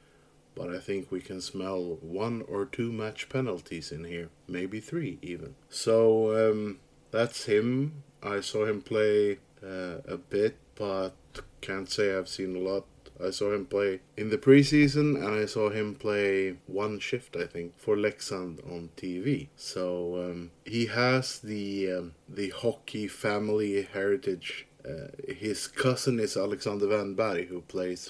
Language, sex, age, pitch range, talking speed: English, male, 30-49, 95-115 Hz, 155 wpm